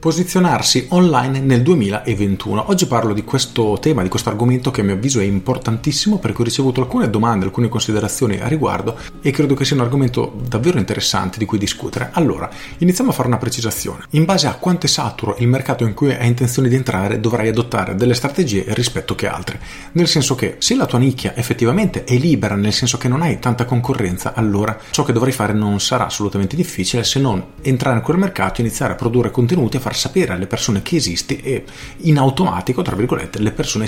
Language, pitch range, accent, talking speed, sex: Italian, 105-135 Hz, native, 205 wpm, male